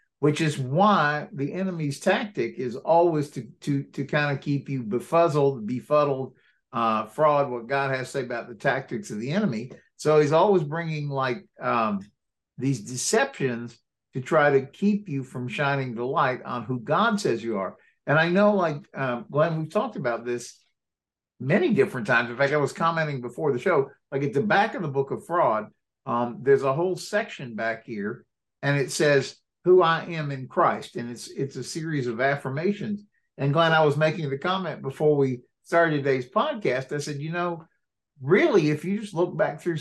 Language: English